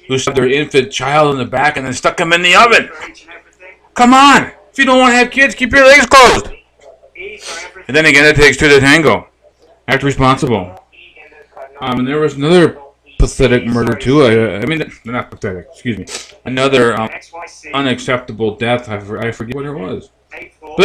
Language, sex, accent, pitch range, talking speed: English, male, American, 115-145 Hz, 180 wpm